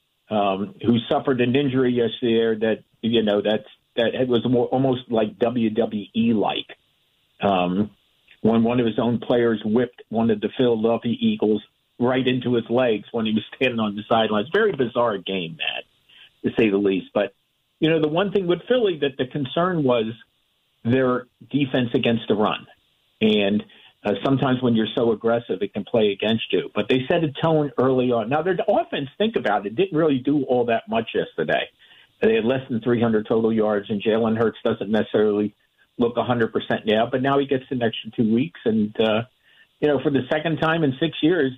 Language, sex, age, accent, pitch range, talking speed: English, male, 50-69, American, 110-145 Hz, 195 wpm